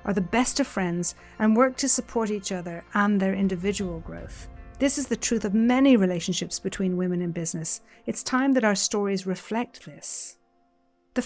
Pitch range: 185-230 Hz